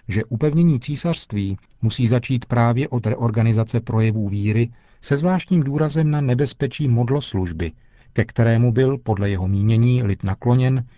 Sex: male